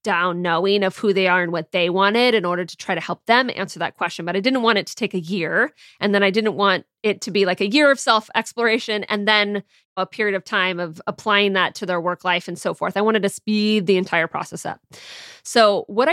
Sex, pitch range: female, 185-230 Hz